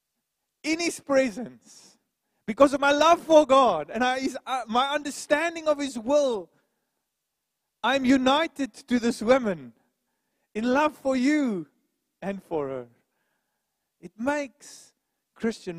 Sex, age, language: male, 40-59, English